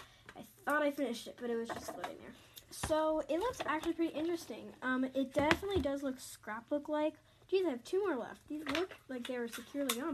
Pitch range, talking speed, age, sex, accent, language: 240-310 Hz, 220 wpm, 10-29, female, American, English